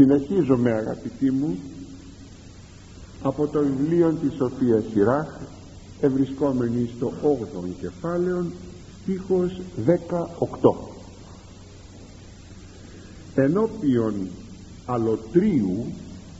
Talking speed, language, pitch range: 70 wpm, Greek, 95-150 Hz